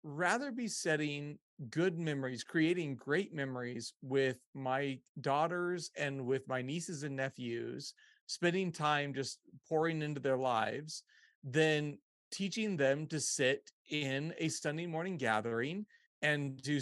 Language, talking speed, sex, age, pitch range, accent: English, 130 wpm, male, 40-59, 140-180 Hz, American